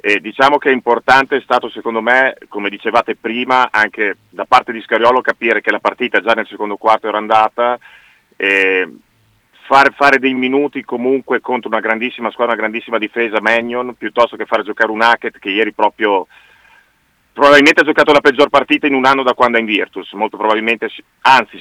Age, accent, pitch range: 40-59, native, 110-130 Hz